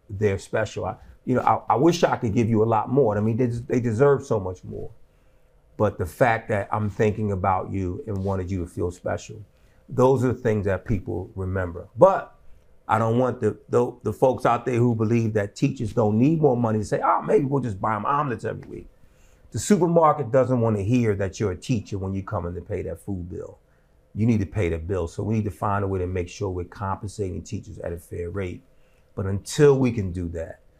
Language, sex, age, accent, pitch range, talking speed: English, male, 40-59, American, 95-115 Hz, 235 wpm